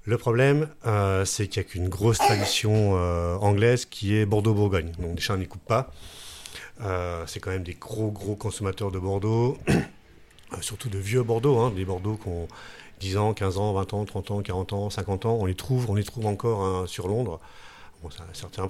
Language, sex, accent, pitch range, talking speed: French, male, French, 95-115 Hz, 215 wpm